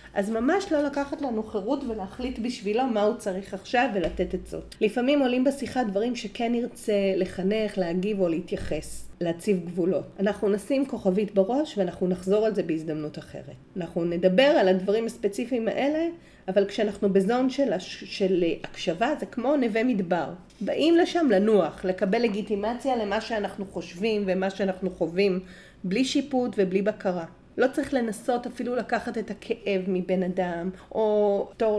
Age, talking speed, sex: 40-59, 150 wpm, female